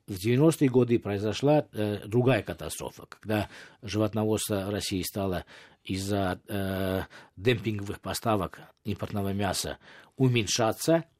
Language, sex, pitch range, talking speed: Russian, male, 100-125 Hz, 95 wpm